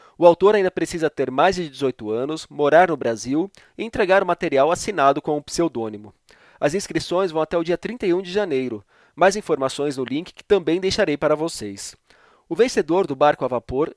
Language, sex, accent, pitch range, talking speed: Portuguese, male, Brazilian, 135-180 Hz, 195 wpm